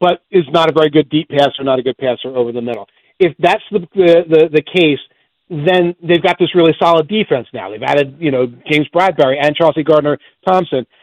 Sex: male